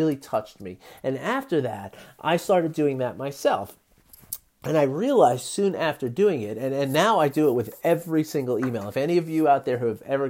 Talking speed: 215 wpm